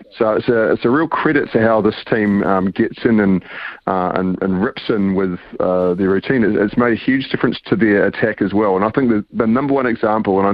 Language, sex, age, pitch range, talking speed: English, male, 40-59, 100-125 Hz, 250 wpm